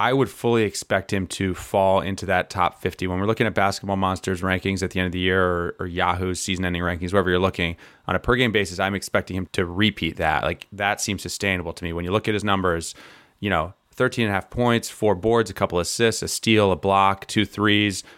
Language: English